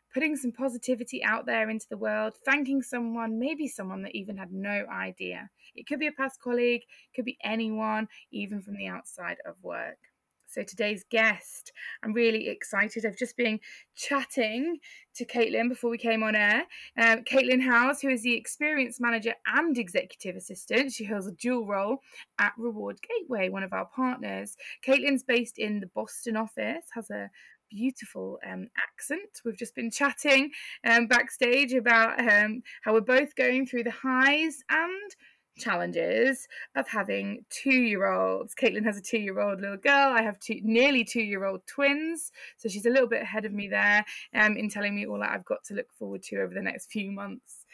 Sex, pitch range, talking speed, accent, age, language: female, 210-260 Hz, 180 wpm, British, 20-39, English